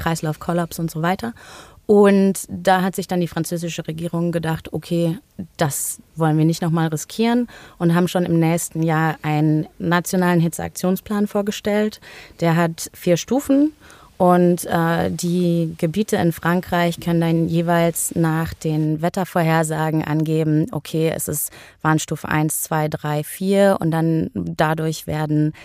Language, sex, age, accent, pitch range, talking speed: German, female, 20-39, German, 155-180 Hz, 140 wpm